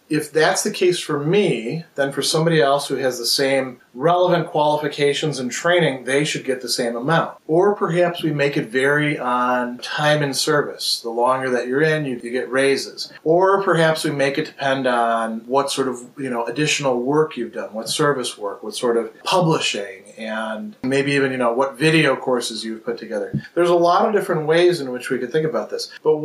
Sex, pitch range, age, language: male, 130-175 Hz, 30-49, English